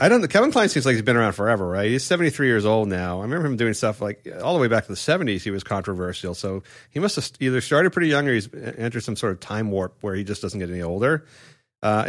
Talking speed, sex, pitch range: 285 wpm, male, 100-125 Hz